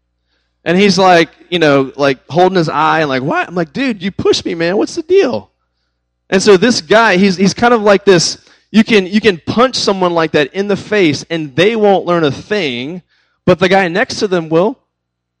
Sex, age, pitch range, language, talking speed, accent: male, 30-49, 115-175 Hz, English, 220 wpm, American